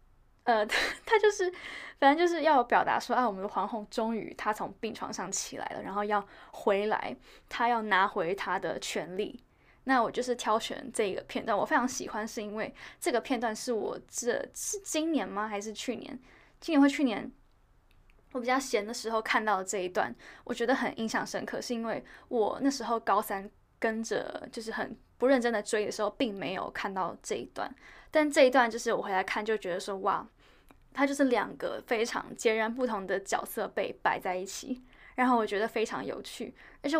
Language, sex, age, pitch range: Chinese, female, 10-29, 210-265 Hz